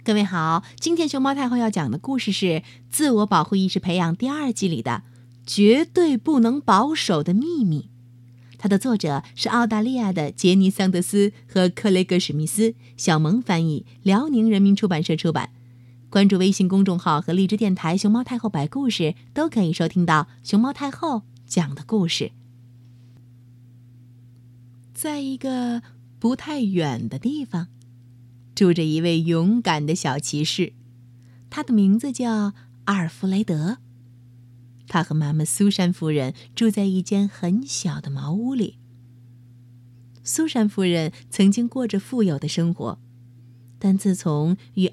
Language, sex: Chinese, female